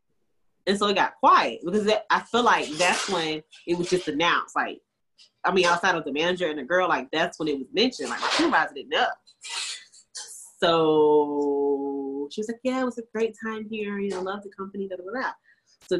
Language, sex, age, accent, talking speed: English, female, 20-39, American, 210 wpm